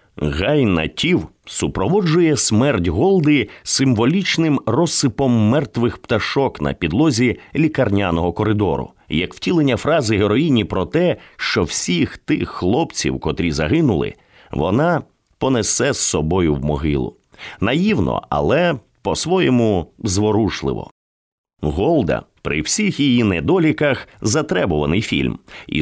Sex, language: male, English